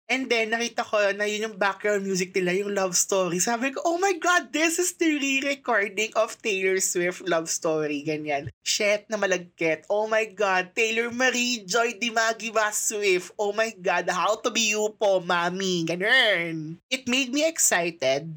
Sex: male